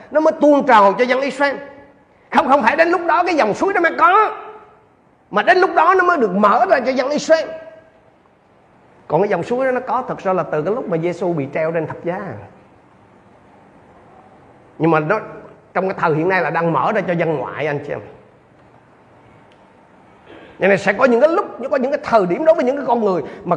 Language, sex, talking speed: Vietnamese, male, 220 wpm